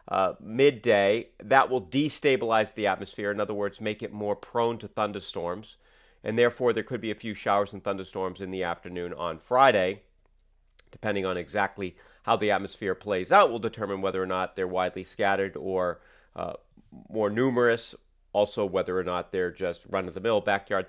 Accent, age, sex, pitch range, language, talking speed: American, 40-59, male, 90-110 Hz, English, 170 wpm